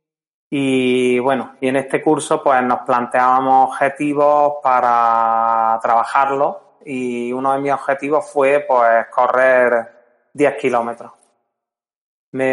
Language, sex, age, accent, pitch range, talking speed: Spanish, male, 30-49, Spanish, 130-160 Hz, 110 wpm